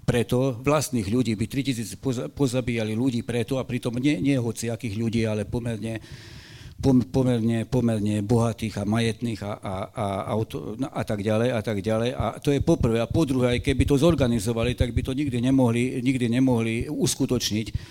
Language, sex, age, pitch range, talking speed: Slovak, male, 50-69, 110-130 Hz, 170 wpm